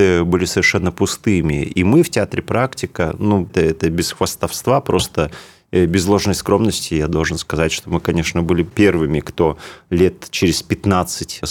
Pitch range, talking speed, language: 80-105 Hz, 150 wpm, Russian